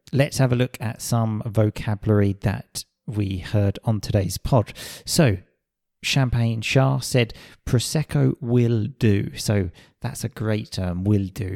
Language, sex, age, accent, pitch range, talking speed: English, male, 30-49, British, 105-130 Hz, 140 wpm